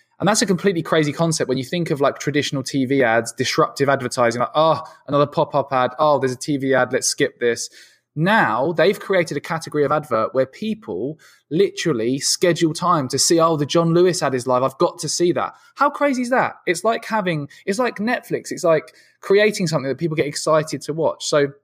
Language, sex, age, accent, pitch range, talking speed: English, male, 20-39, British, 135-180 Hz, 210 wpm